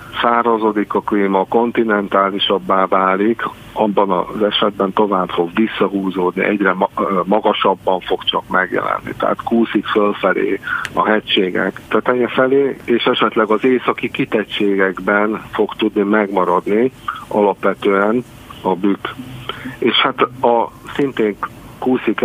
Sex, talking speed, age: male, 105 wpm, 50-69